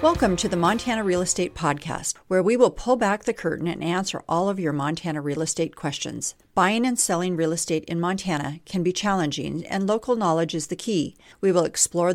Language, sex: English, female